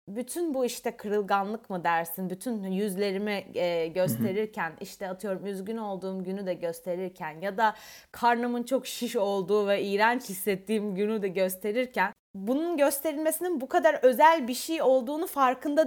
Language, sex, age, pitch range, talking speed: Turkish, female, 30-49, 210-305 Hz, 145 wpm